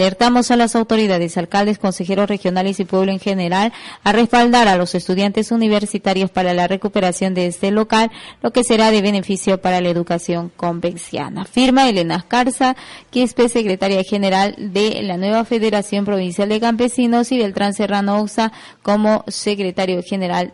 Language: Spanish